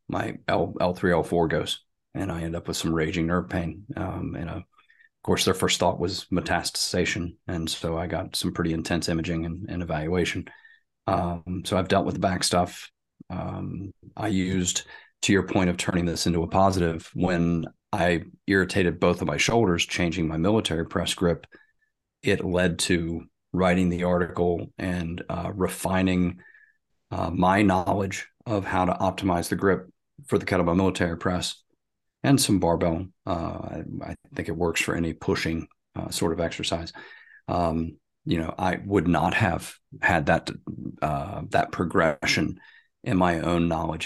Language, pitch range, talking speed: English, 85-95 Hz, 165 wpm